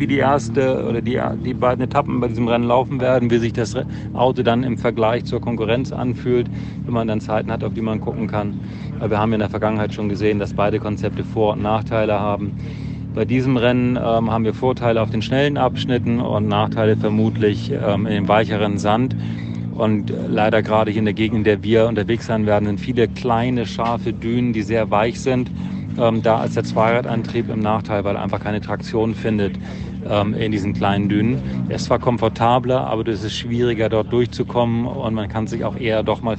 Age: 40-59